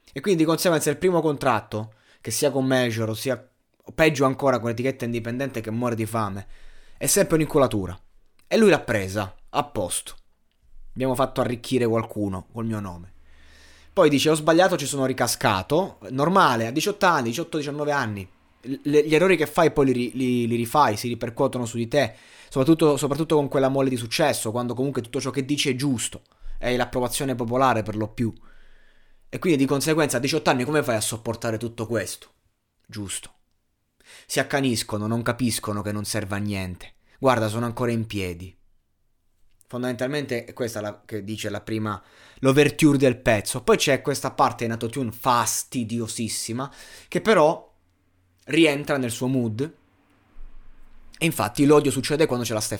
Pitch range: 105-140 Hz